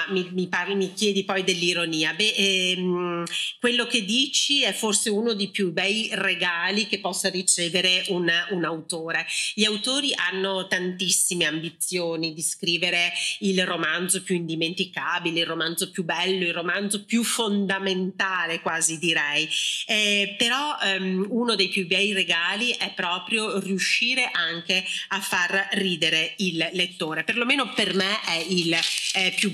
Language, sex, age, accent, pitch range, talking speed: Italian, female, 40-59, native, 175-210 Hz, 130 wpm